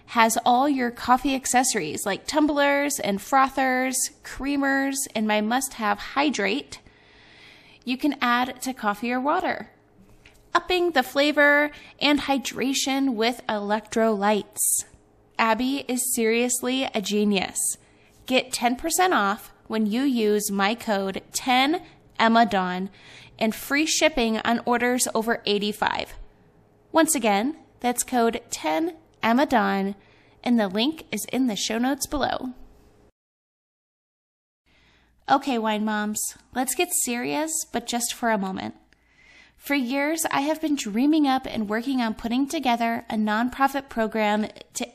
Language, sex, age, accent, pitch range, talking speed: English, female, 10-29, American, 210-270 Hz, 125 wpm